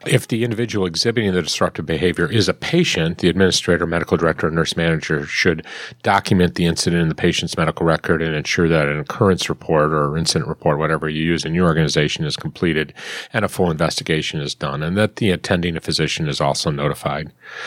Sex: male